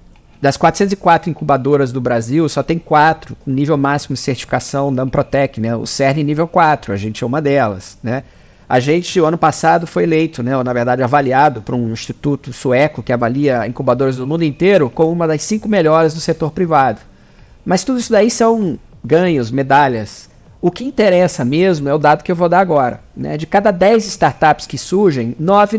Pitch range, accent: 135-175 Hz, Brazilian